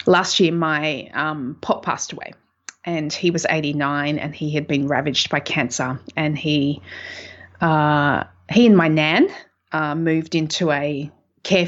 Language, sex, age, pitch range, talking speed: English, female, 30-49, 145-170 Hz, 155 wpm